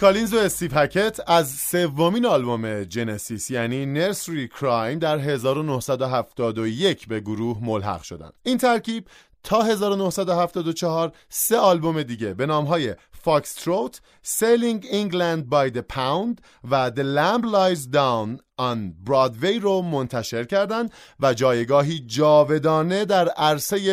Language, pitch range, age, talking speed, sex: English, 130-190 Hz, 30-49, 115 wpm, male